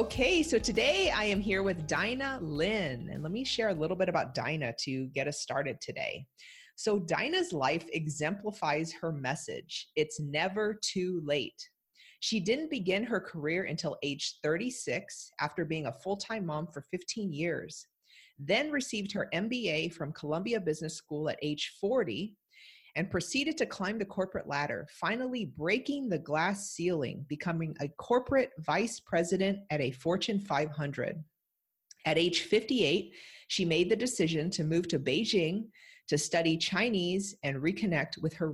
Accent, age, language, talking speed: American, 30-49, English, 155 wpm